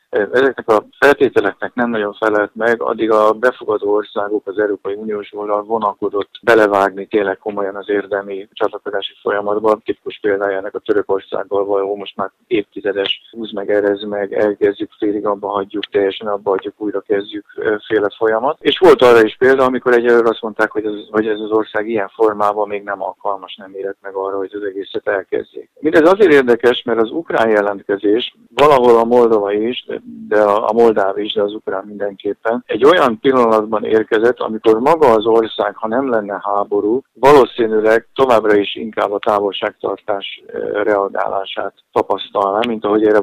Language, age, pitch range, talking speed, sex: Hungarian, 50-69, 100-115 Hz, 160 wpm, male